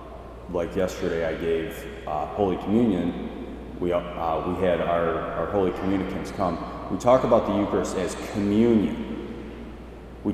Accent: American